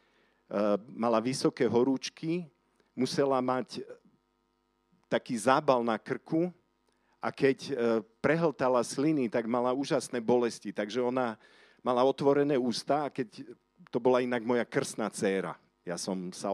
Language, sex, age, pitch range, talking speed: Slovak, male, 50-69, 100-130 Hz, 120 wpm